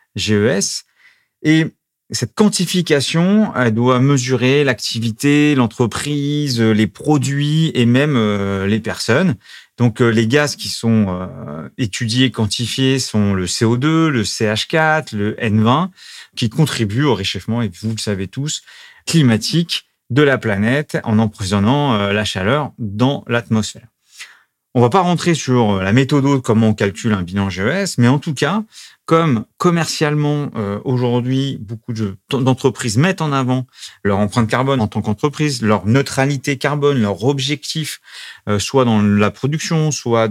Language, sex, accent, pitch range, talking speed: French, male, French, 110-145 Hz, 145 wpm